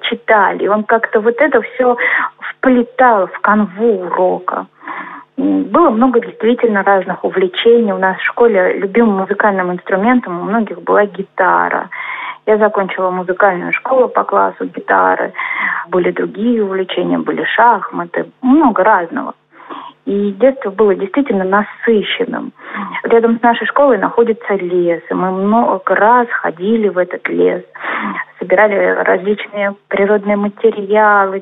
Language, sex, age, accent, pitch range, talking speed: Russian, female, 30-49, native, 200-245 Hz, 120 wpm